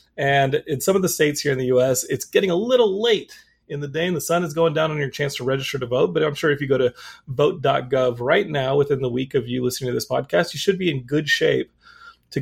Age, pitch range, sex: 30-49, 130-165 Hz, male